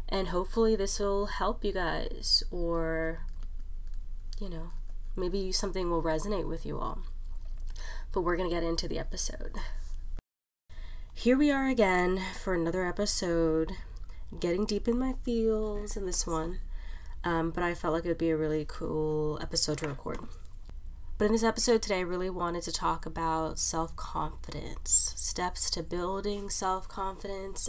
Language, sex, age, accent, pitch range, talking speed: English, female, 20-39, American, 135-185 Hz, 150 wpm